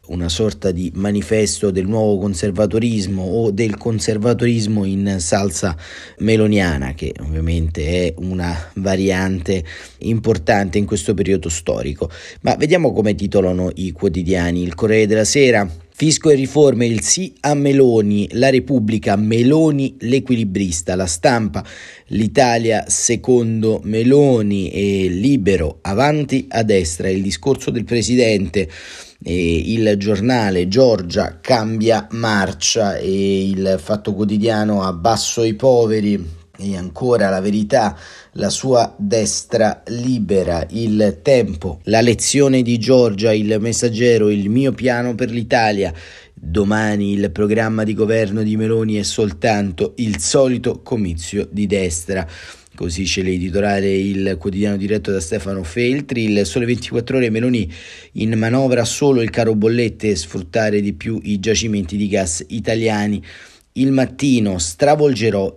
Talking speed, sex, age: 125 wpm, male, 30-49